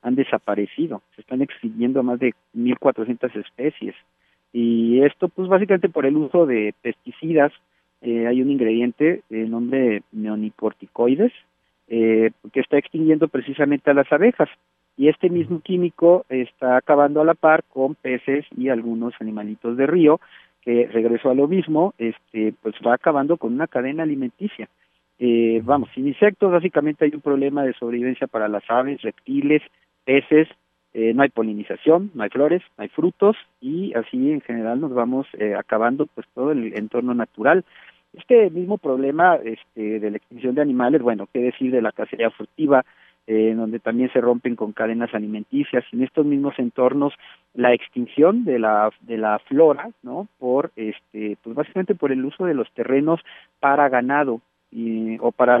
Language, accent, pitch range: Spanish, Mexican, 115-150 Hz